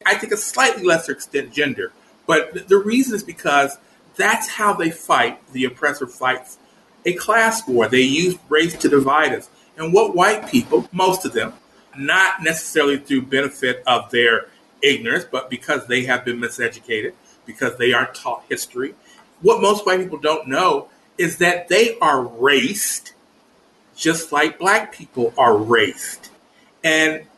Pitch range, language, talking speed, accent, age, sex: 140-225 Hz, English, 155 wpm, American, 50-69, male